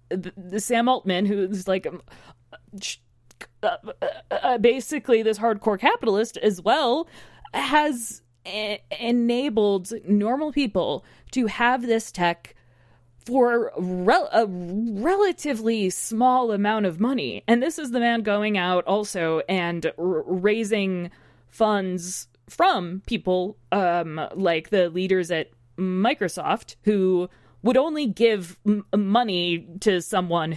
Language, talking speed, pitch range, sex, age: English, 105 wpm, 175-230 Hz, female, 20-39